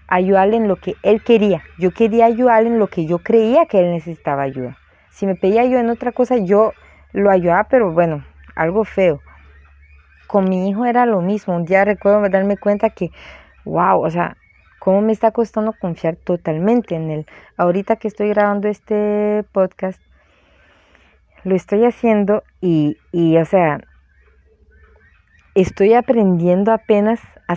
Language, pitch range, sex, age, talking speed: Spanish, 160-210 Hz, female, 30-49, 155 wpm